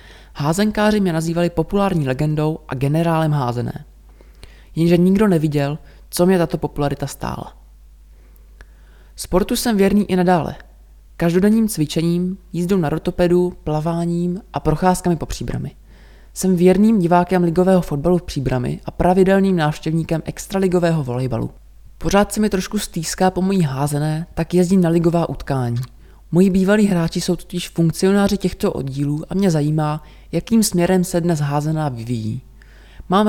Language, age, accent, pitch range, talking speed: Czech, 20-39, native, 145-185 Hz, 130 wpm